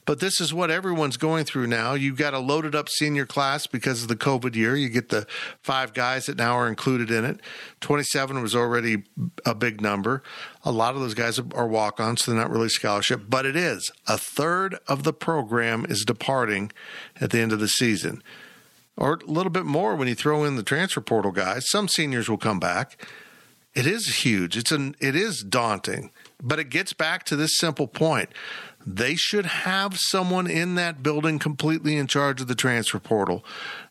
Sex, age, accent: male, 50-69, American